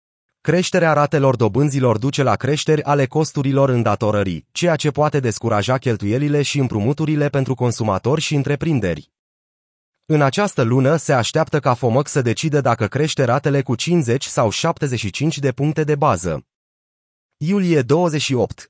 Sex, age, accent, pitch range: male, 30-49, native, 120-150 Hz